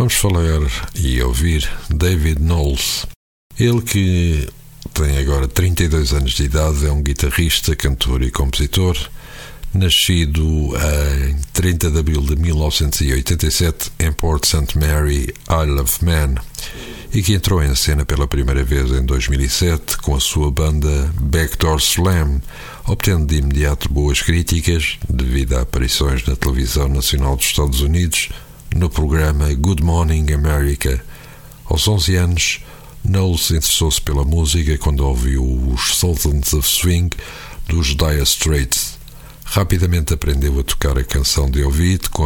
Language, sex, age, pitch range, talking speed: Portuguese, male, 60-79, 70-85 Hz, 135 wpm